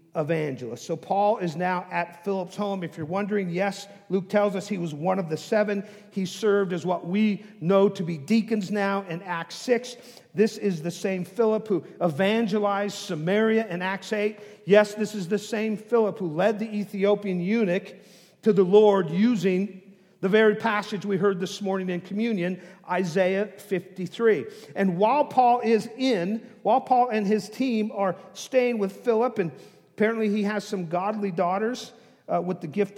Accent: American